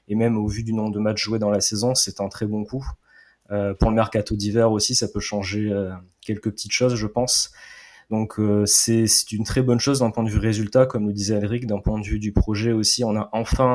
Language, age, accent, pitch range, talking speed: French, 20-39, French, 100-115 Hz, 260 wpm